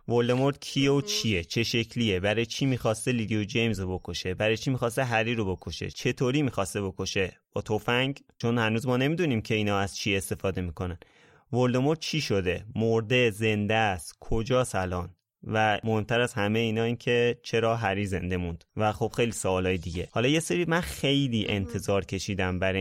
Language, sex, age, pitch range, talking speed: Persian, male, 30-49, 100-125 Hz, 175 wpm